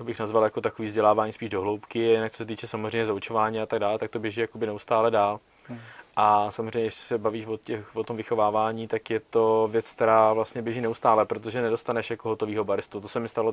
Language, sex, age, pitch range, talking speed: Czech, male, 20-39, 105-115 Hz, 215 wpm